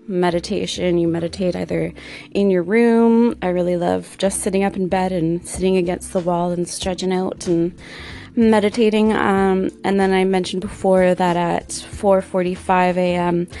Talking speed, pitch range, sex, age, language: 155 wpm, 175-200 Hz, female, 20-39, English